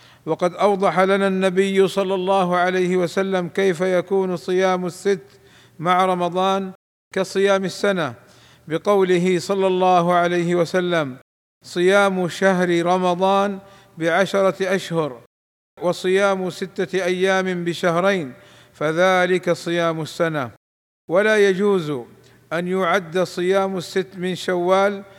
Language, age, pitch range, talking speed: Arabic, 50-69, 175-195 Hz, 100 wpm